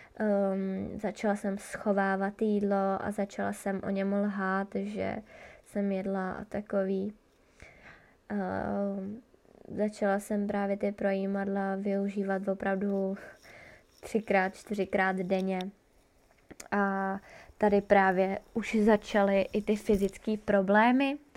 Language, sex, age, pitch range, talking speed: Czech, female, 20-39, 195-210 Hz, 100 wpm